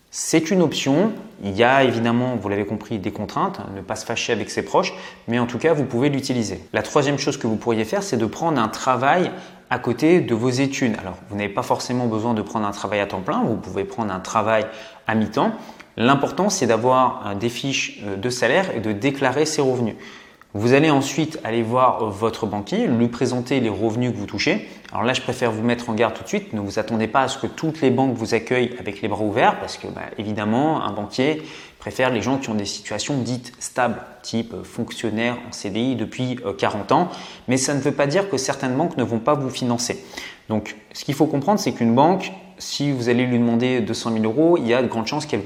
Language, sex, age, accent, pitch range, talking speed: French, male, 30-49, French, 110-130 Hz, 230 wpm